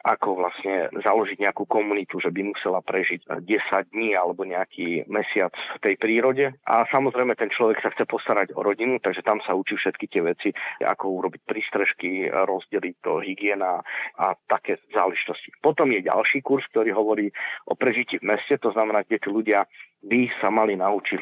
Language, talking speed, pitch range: Slovak, 175 wpm, 100-135 Hz